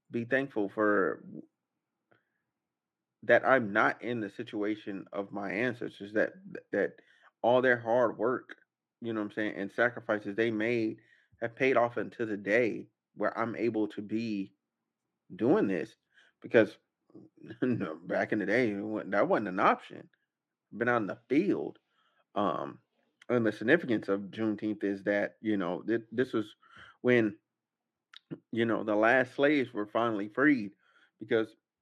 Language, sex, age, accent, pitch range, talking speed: English, male, 30-49, American, 105-125 Hz, 150 wpm